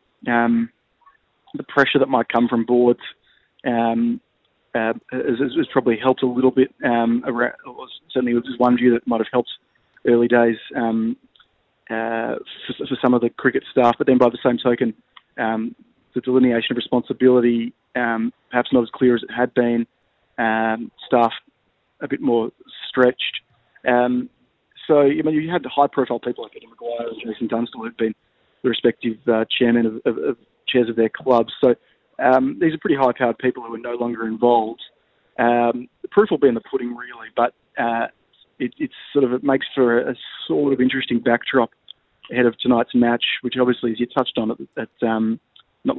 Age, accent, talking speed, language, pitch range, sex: 20-39, Australian, 185 wpm, English, 115-130 Hz, male